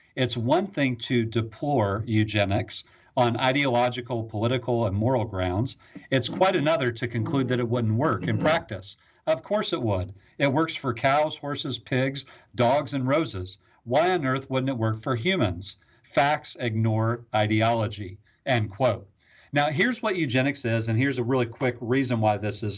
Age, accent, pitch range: 50-69, American, 115-140 Hz